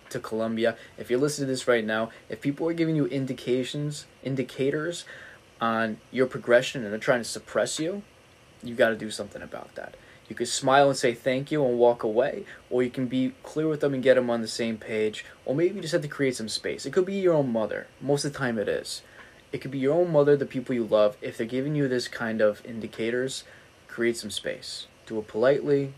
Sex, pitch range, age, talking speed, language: male, 115-140 Hz, 20-39, 235 wpm, English